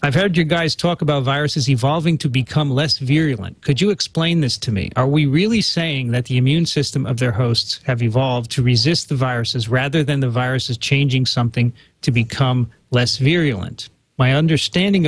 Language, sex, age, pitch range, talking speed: English, male, 40-59, 125-150 Hz, 185 wpm